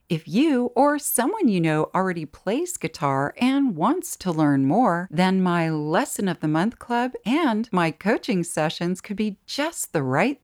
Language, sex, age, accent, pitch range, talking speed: English, female, 50-69, American, 160-240 Hz, 170 wpm